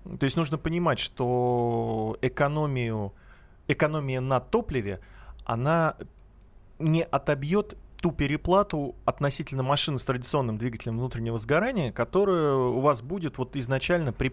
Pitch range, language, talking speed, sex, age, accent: 115-145 Hz, Russian, 115 wpm, male, 30-49, native